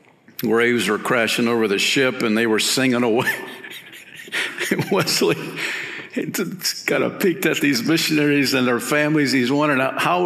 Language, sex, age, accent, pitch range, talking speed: English, male, 50-69, American, 110-150 Hz, 140 wpm